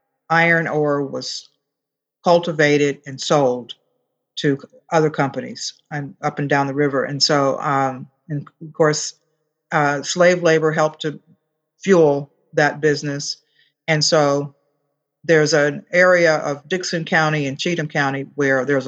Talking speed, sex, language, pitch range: 135 wpm, female, English, 140-160 Hz